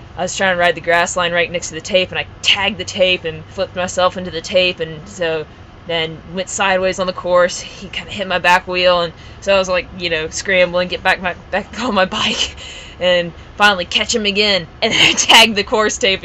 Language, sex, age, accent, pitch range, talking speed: English, female, 20-39, American, 165-185 Hz, 245 wpm